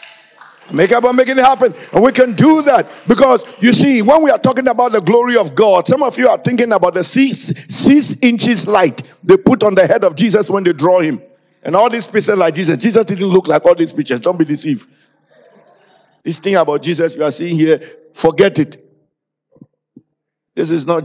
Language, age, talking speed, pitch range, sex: English, 50-69, 210 wpm, 165-240 Hz, male